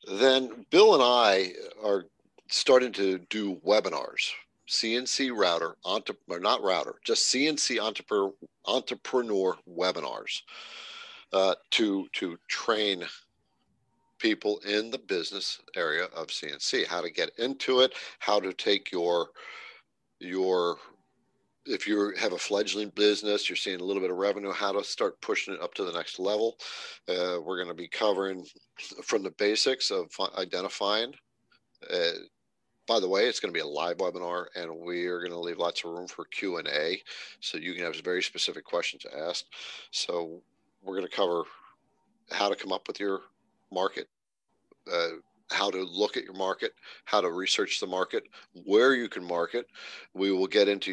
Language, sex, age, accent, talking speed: English, male, 50-69, American, 165 wpm